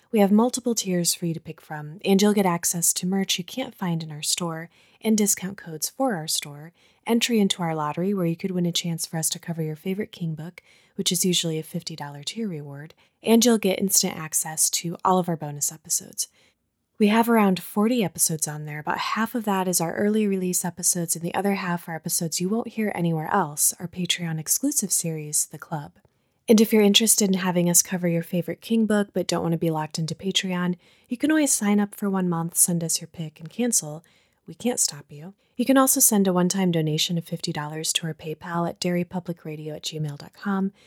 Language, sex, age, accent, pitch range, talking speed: English, female, 20-39, American, 165-200 Hz, 220 wpm